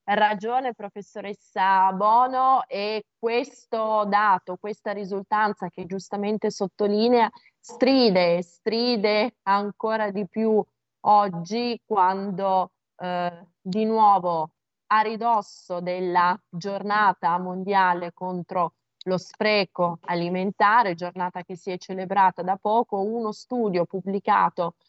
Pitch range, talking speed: 180-210 Hz, 95 wpm